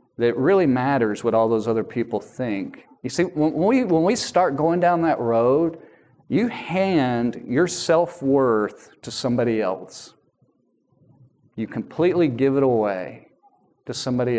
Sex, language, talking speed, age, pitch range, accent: male, English, 140 wpm, 40-59, 115-165 Hz, American